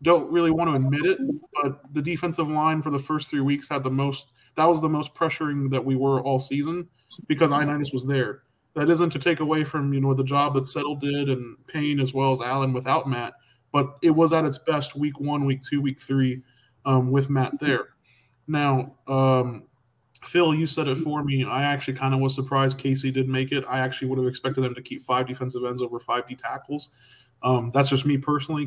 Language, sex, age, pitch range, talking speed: English, male, 20-39, 130-150 Hz, 225 wpm